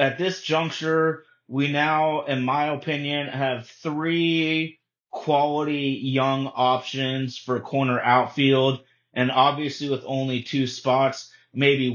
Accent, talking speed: American, 115 wpm